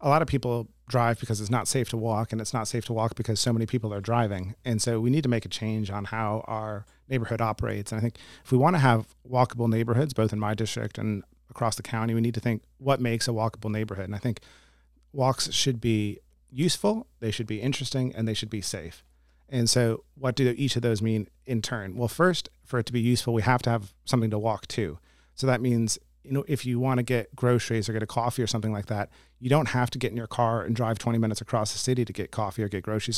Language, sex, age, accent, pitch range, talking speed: English, male, 30-49, American, 105-120 Hz, 255 wpm